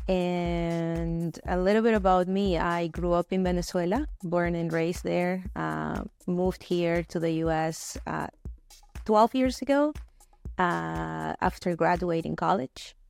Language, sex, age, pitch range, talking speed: English, female, 20-39, 170-195 Hz, 135 wpm